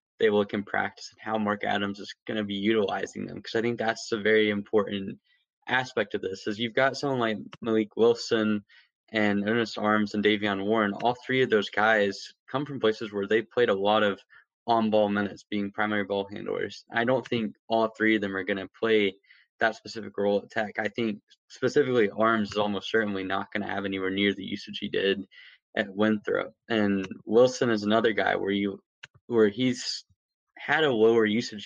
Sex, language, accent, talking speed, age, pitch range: male, English, American, 200 wpm, 10-29, 100-115 Hz